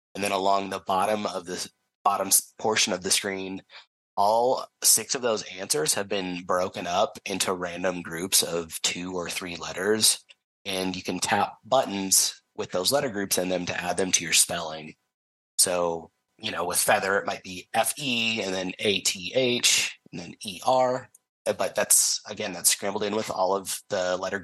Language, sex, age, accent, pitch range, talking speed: English, male, 30-49, American, 90-105 Hz, 185 wpm